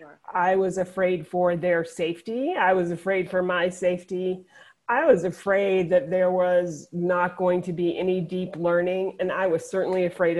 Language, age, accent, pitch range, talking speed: English, 30-49, American, 175-215 Hz, 175 wpm